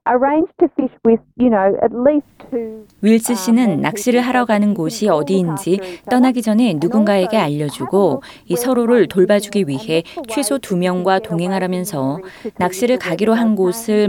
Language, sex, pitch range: Korean, female, 175-235 Hz